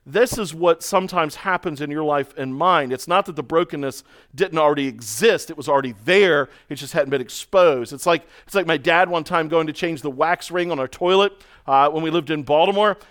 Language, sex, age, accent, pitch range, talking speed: English, male, 40-59, American, 140-190 Hz, 230 wpm